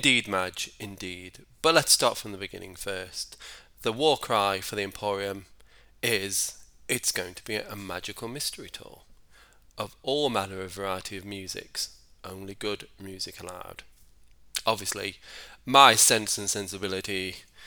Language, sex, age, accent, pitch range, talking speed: English, male, 20-39, British, 95-115 Hz, 140 wpm